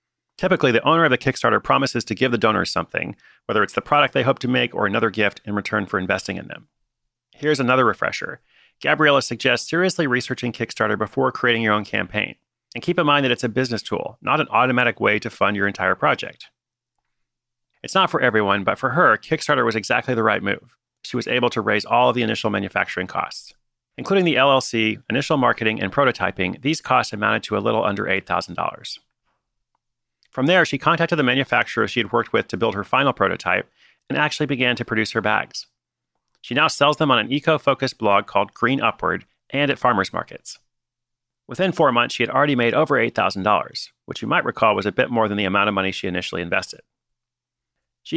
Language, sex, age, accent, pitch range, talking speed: English, male, 30-49, American, 110-140 Hz, 200 wpm